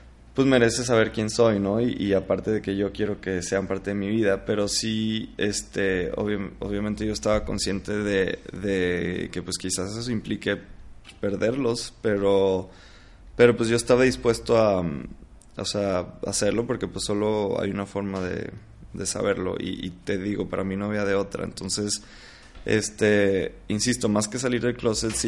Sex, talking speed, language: male, 175 wpm, Spanish